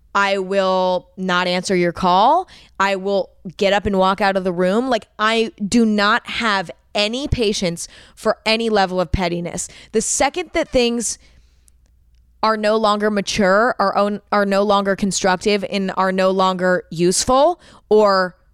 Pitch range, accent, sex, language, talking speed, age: 175-225 Hz, American, female, English, 155 wpm, 20-39